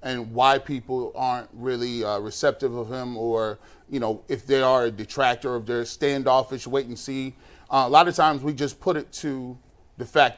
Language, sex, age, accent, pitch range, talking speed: English, male, 30-49, American, 120-145 Hz, 200 wpm